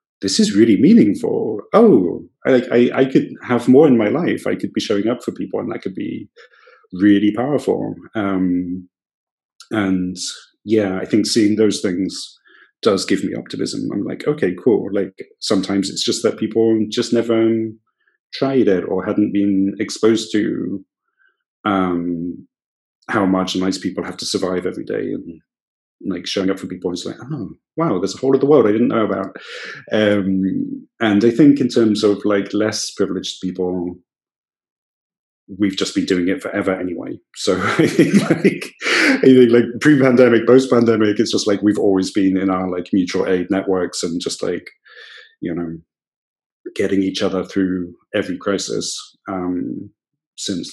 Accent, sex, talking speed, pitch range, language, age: British, male, 165 wpm, 95-115 Hz, English, 30-49